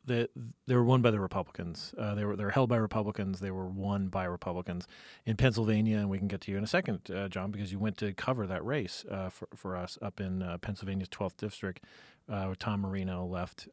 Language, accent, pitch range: English, American, 95-115 Hz